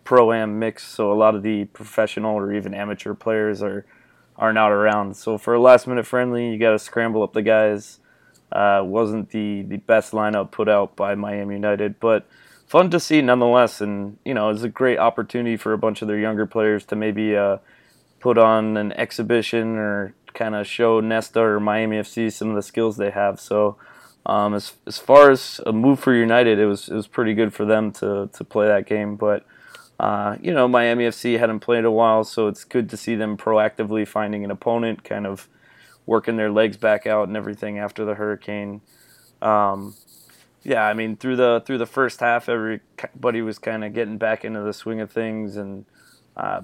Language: English